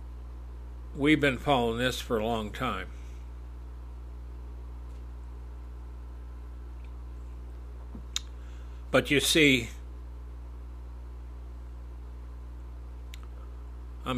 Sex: male